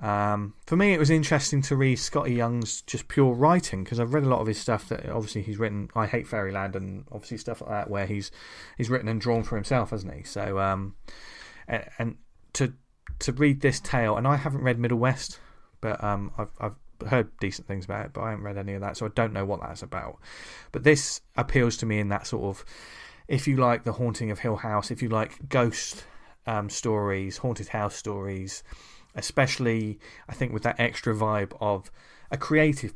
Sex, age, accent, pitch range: male, 20-39, British, 100-125 Hz